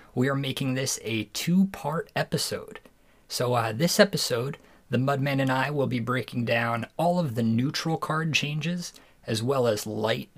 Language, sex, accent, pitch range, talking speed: English, male, American, 115-140 Hz, 170 wpm